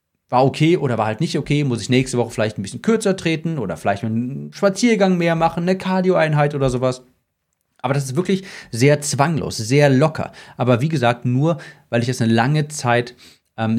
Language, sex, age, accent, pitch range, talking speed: German, male, 30-49, German, 125-180 Hz, 195 wpm